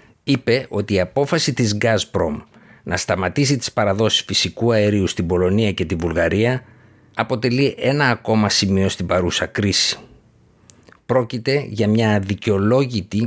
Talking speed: 125 wpm